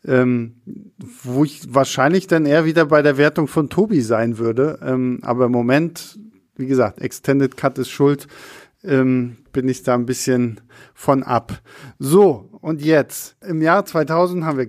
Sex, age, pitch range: male, 50-69, 130-160 Hz